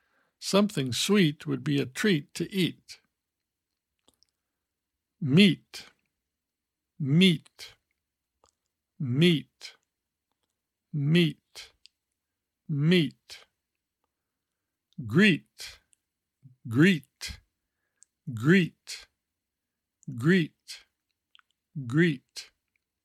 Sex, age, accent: male, 60-79, American